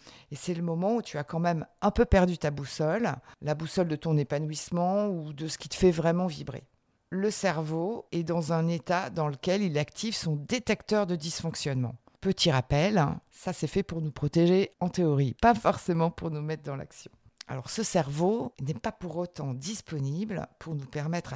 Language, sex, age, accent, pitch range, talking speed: French, female, 50-69, French, 155-195 Hz, 195 wpm